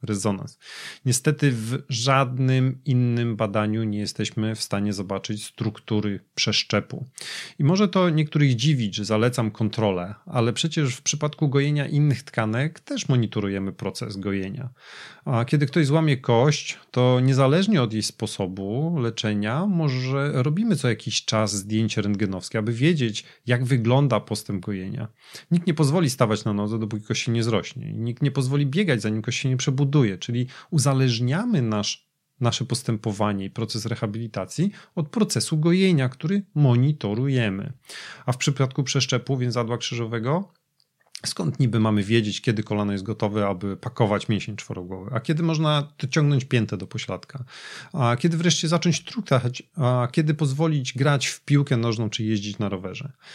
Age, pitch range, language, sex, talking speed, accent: 30-49, 110-150 Hz, Polish, male, 145 wpm, native